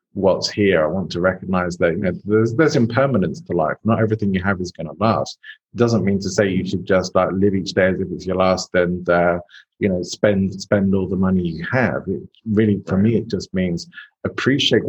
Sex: male